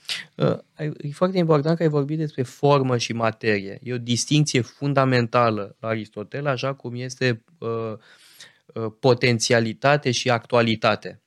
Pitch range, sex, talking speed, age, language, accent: 115-160 Hz, male, 115 wpm, 20-39, Romanian, native